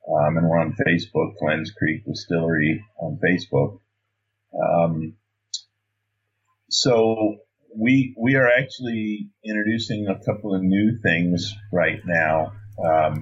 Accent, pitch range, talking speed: American, 90-110 Hz, 115 wpm